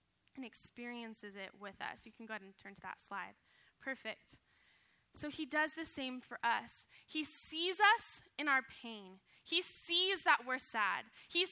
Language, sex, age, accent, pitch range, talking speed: English, female, 10-29, American, 225-315 Hz, 175 wpm